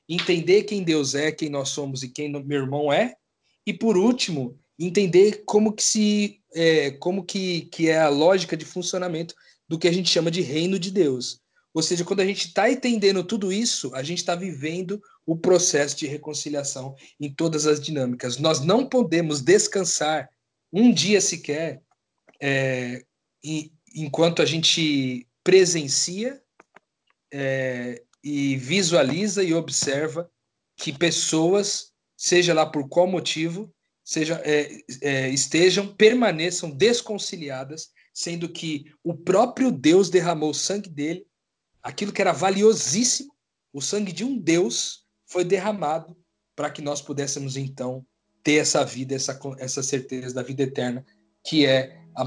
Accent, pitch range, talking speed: Brazilian, 140-185 Hz, 145 wpm